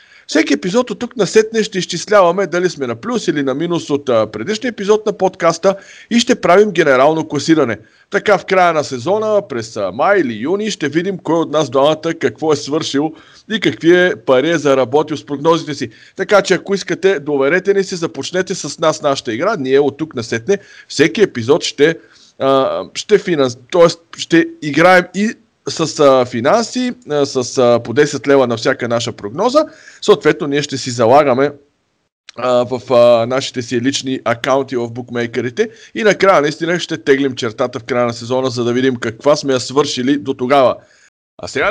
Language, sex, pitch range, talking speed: Bulgarian, male, 130-185 Hz, 175 wpm